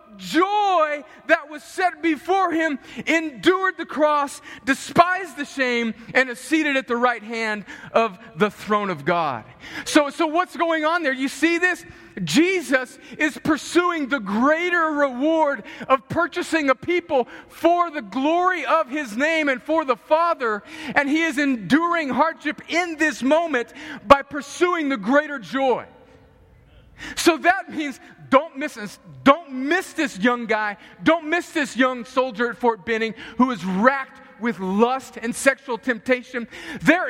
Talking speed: 150 wpm